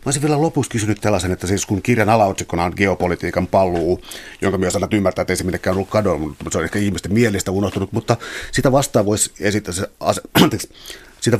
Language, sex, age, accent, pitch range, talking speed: Finnish, male, 30-49, native, 95-115 Hz, 170 wpm